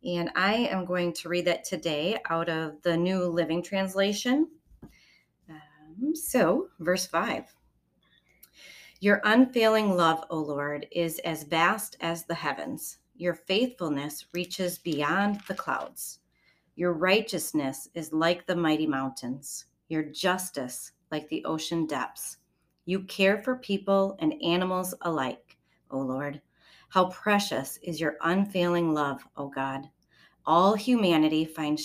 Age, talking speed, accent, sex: 30-49, 130 wpm, American, female